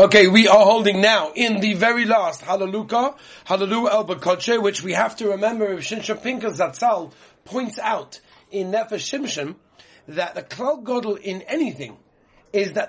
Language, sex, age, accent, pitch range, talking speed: English, male, 40-59, British, 180-220 Hz, 155 wpm